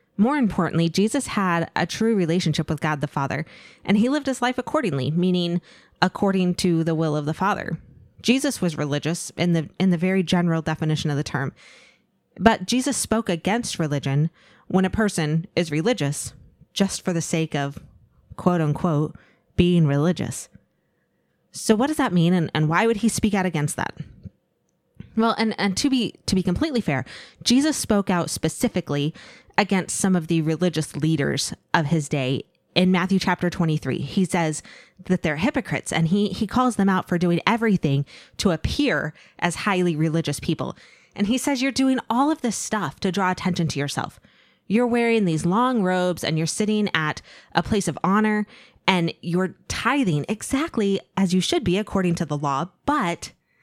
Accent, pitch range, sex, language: American, 160-215 Hz, female, English